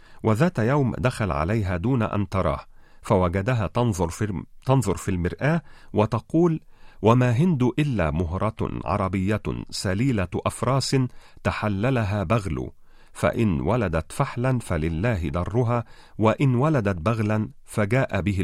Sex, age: male, 40-59